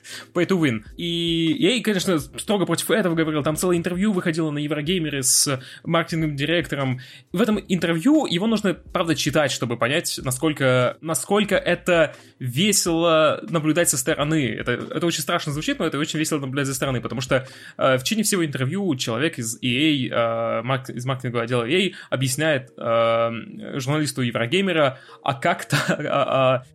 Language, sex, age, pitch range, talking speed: Russian, male, 20-39, 125-160 Hz, 155 wpm